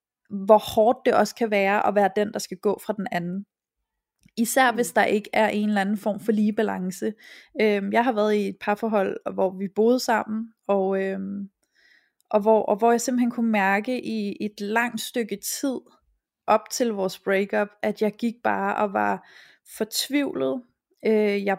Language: Danish